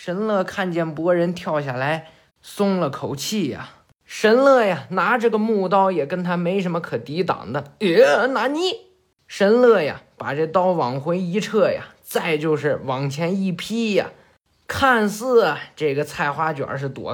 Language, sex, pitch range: Chinese, male, 155-210 Hz